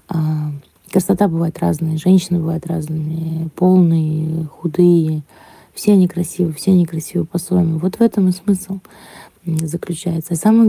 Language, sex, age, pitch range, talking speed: Russian, female, 20-39, 170-190 Hz, 135 wpm